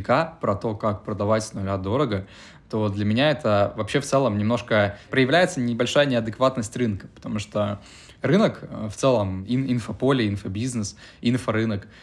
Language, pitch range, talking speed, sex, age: Russian, 105-125 Hz, 135 wpm, male, 20-39